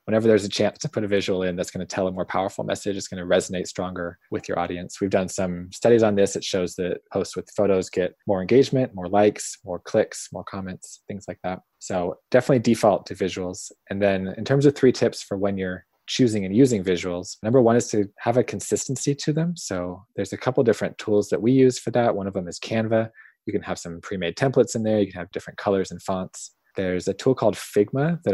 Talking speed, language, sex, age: 245 wpm, English, male, 20-39